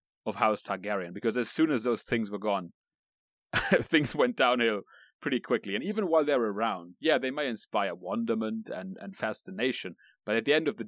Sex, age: male, 30-49